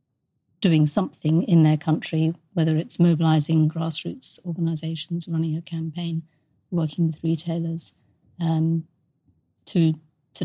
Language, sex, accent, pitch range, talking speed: English, female, British, 160-175 Hz, 110 wpm